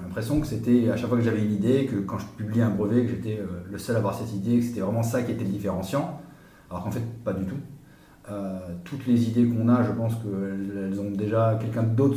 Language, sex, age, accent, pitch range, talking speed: French, male, 40-59, French, 100-125 Hz, 250 wpm